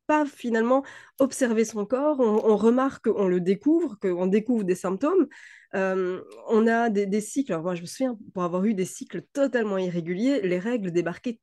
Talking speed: 190 wpm